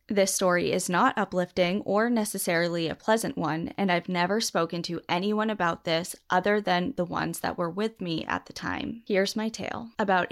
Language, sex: English, female